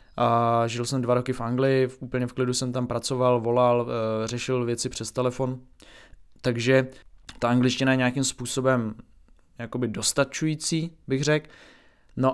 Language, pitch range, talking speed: Czech, 115-130 Hz, 140 wpm